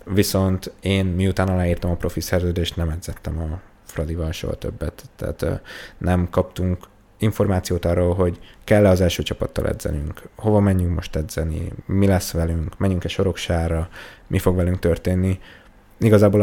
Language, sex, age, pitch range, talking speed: Hungarian, male, 20-39, 85-100 Hz, 140 wpm